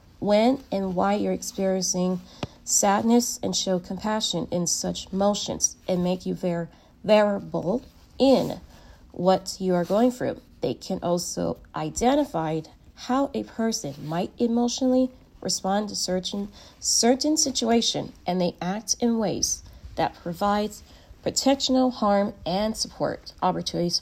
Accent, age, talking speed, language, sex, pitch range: American, 40-59, 120 wpm, English, female, 180-245 Hz